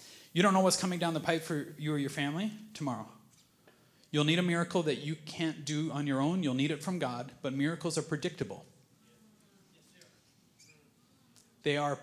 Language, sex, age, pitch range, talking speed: English, male, 30-49, 145-195 Hz, 180 wpm